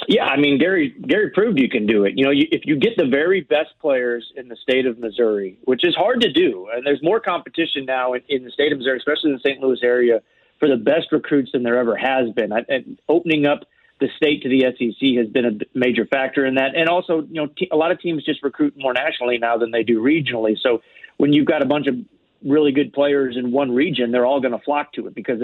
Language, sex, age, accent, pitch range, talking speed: English, male, 40-59, American, 125-145 Hz, 250 wpm